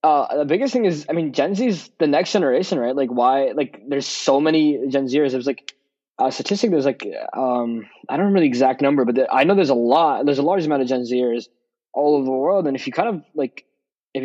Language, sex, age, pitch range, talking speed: English, male, 20-39, 130-155 Hz, 255 wpm